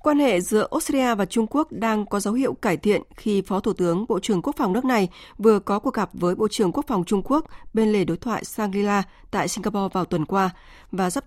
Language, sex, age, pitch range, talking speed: Vietnamese, female, 20-39, 190-240 Hz, 245 wpm